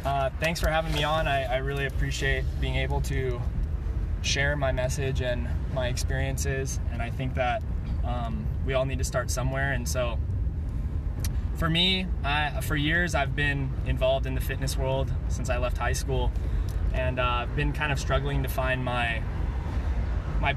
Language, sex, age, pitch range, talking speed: English, male, 20-39, 70-95 Hz, 175 wpm